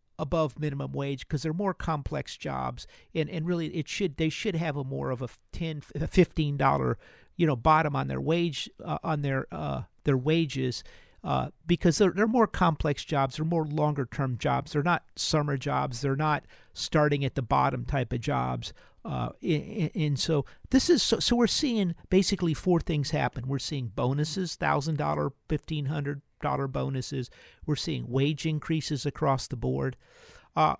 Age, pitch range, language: 50-69, 140-170 Hz, English